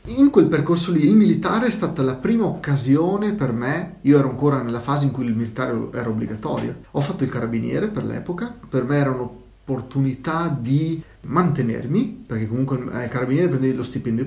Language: Italian